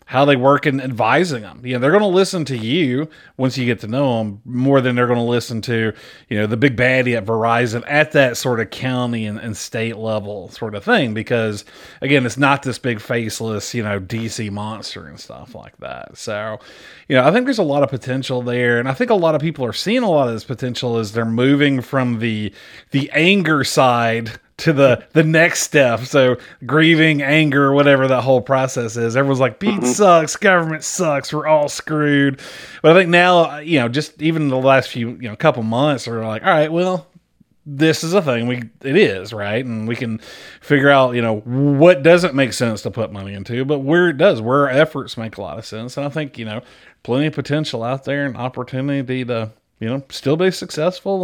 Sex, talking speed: male, 220 wpm